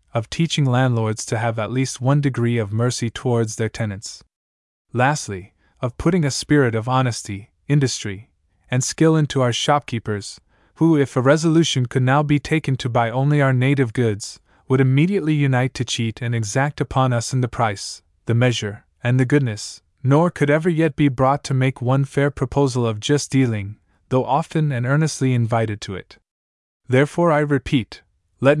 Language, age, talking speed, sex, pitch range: English, 20-39, 175 wpm, male, 115-140 Hz